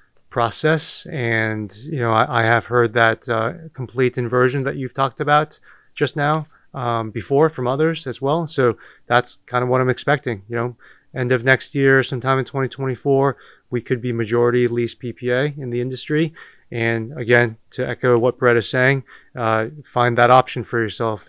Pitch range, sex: 115-135 Hz, male